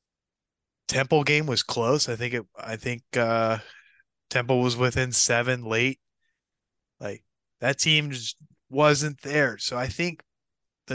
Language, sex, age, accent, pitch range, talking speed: English, male, 20-39, American, 105-130 Hz, 135 wpm